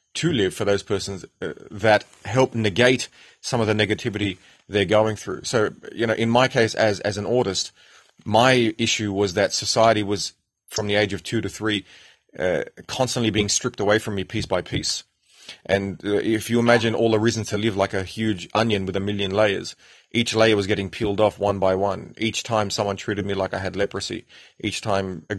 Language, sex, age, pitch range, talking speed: English, male, 30-49, 100-110 Hz, 210 wpm